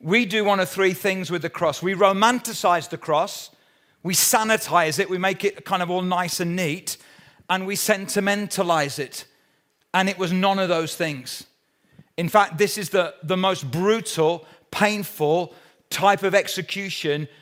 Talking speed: 165 wpm